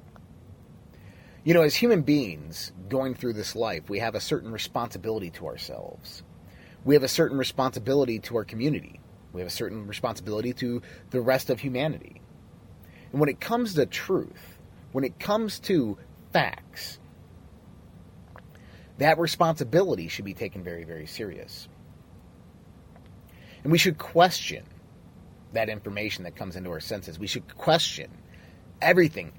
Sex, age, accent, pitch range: male, 30-49, American, 95-150 Hz